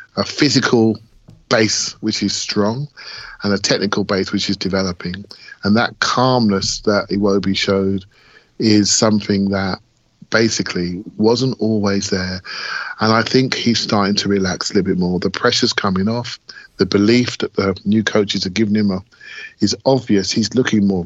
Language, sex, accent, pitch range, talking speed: English, male, British, 100-125 Hz, 155 wpm